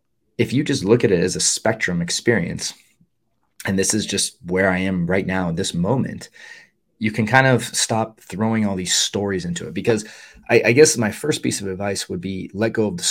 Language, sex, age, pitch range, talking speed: English, male, 30-49, 95-110 Hz, 220 wpm